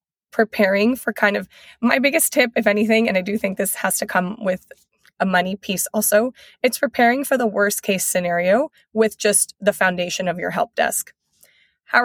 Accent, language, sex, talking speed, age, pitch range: American, English, female, 190 wpm, 20-39, 180-210 Hz